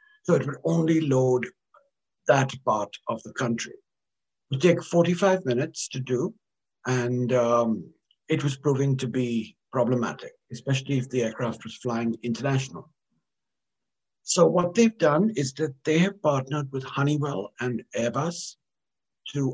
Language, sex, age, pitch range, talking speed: English, male, 60-79, 125-155 Hz, 140 wpm